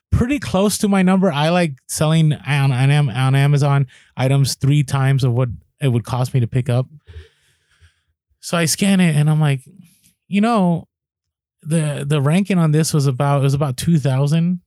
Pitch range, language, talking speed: 115-150 Hz, English, 175 wpm